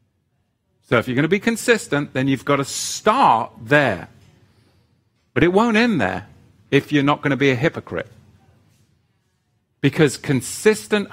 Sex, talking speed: male, 150 wpm